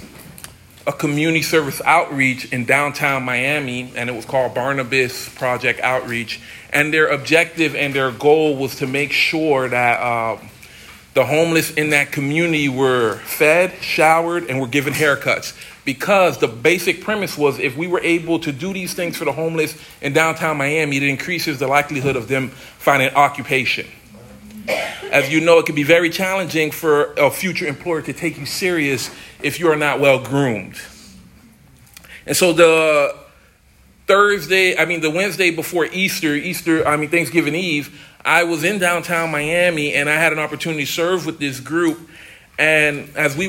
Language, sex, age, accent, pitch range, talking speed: English, male, 40-59, American, 140-165 Hz, 165 wpm